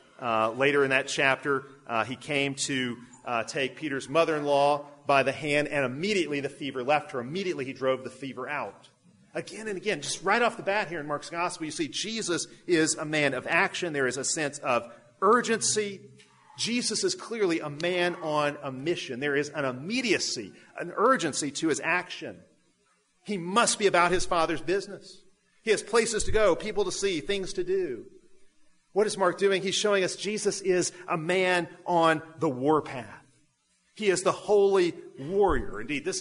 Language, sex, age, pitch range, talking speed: English, male, 40-59, 140-200 Hz, 185 wpm